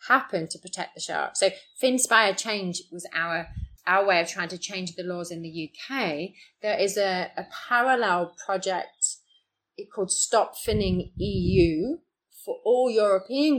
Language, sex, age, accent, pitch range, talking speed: English, female, 30-49, British, 170-210 Hz, 150 wpm